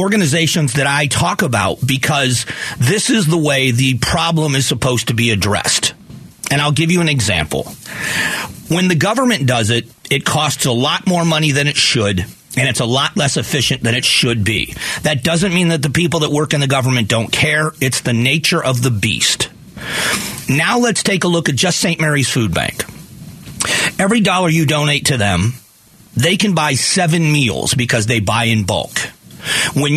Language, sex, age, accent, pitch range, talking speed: English, male, 40-59, American, 125-160 Hz, 190 wpm